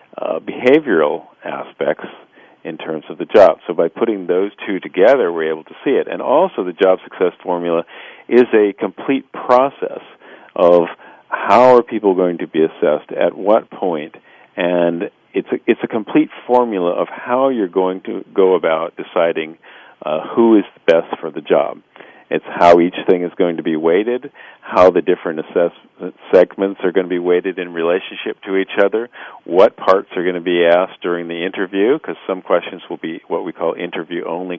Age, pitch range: 50-69, 90-110 Hz